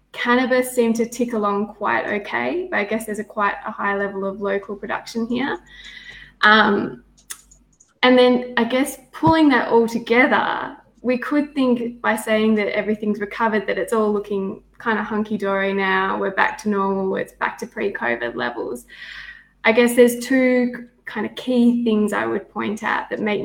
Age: 20-39